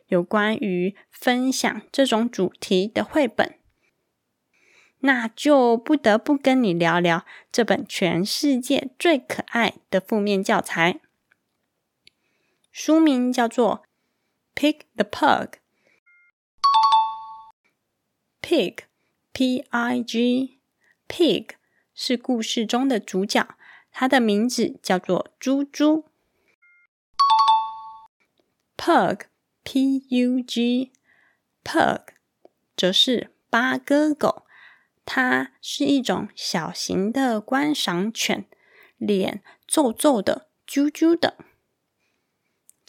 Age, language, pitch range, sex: 20-39, Chinese, 210-280 Hz, female